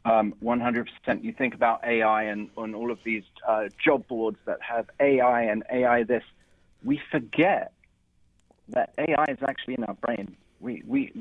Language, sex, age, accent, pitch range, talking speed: English, male, 40-59, British, 105-125 Hz, 165 wpm